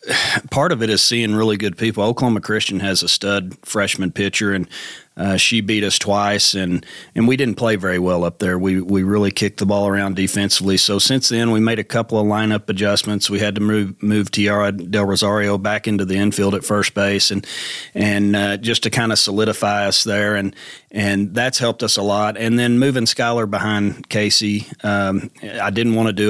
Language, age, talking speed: English, 40-59, 210 wpm